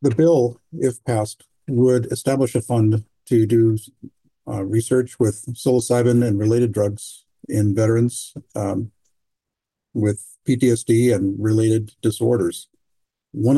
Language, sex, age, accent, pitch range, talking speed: English, male, 50-69, American, 110-125 Hz, 115 wpm